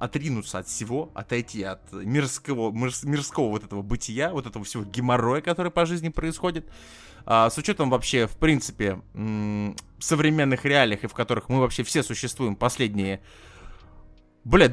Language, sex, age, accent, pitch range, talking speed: Russian, male, 20-39, native, 100-140 Hz, 145 wpm